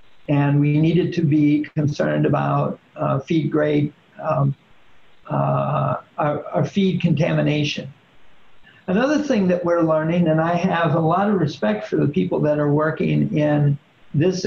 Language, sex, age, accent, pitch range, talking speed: English, male, 60-79, American, 150-195 Hz, 150 wpm